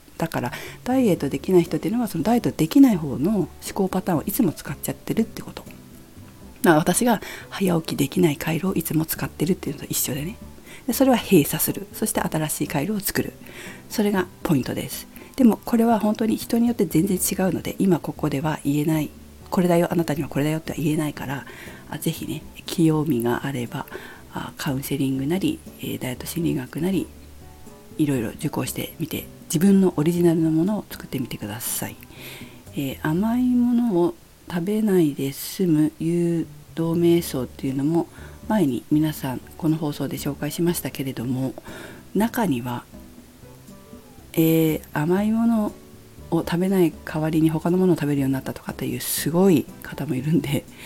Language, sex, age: Japanese, female, 50-69